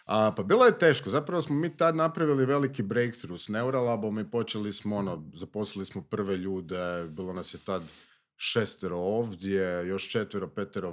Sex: male